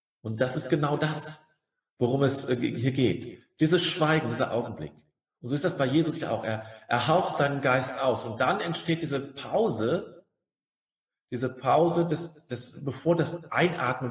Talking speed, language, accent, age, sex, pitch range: 165 wpm, German, German, 40-59, male, 125-165 Hz